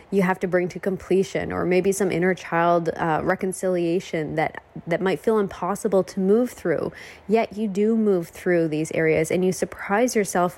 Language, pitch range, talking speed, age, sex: English, 170-215 Hz, 180 wpm, 20-39, female